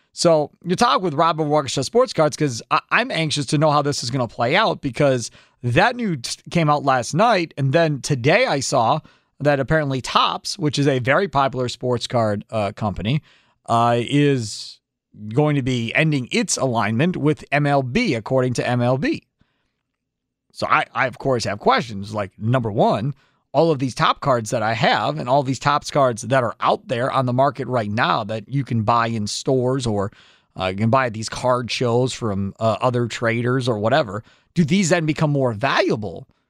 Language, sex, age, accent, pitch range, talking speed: English, male, 40-59, American, 115-145 Hz, 195 wpm